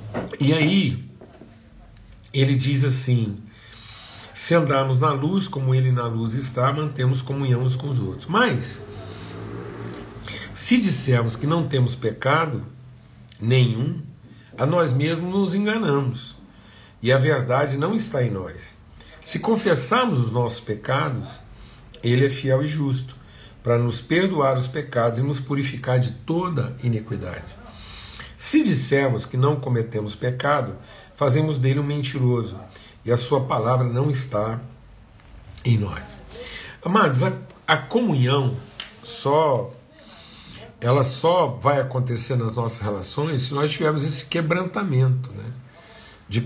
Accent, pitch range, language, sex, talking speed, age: Brazilian, 115-145 Hz, Portuguese, male, 125 wpm, 60-79